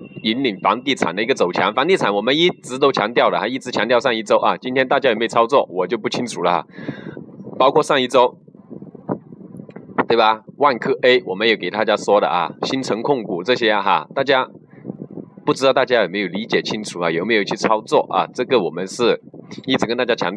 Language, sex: Chinese, male